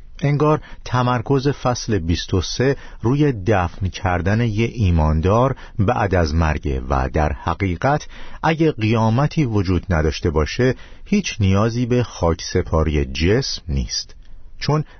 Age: 50-69